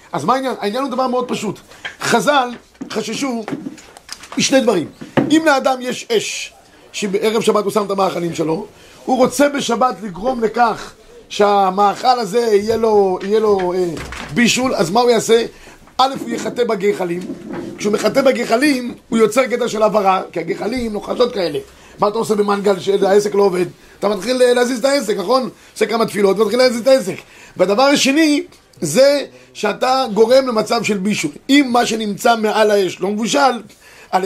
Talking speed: 160 wpm